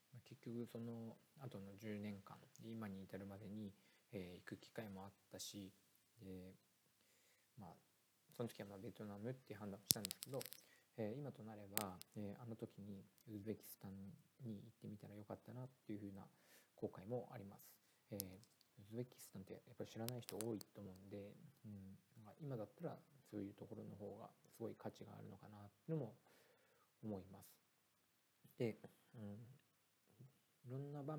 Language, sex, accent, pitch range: Japanese, male, native, 100-120 Hz